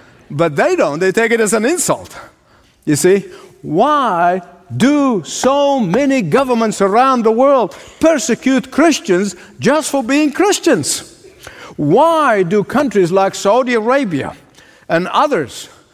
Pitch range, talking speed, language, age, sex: 185-270 Hz, 125 wpm, English, 60-79, male